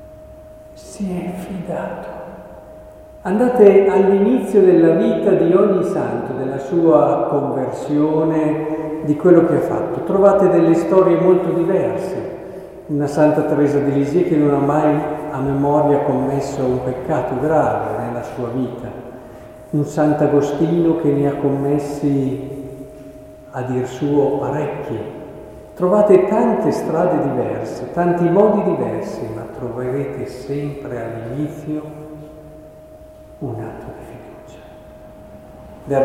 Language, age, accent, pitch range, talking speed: Italian, 50-69, native, 130-175 Hz, 110 wpm